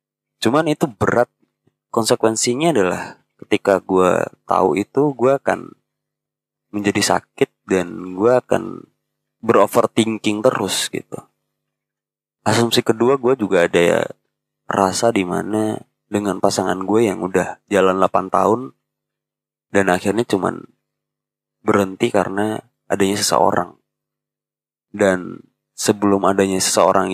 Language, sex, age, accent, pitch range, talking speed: Indonesian, male, 20-39, native, 95-115 Hz, 105 wpm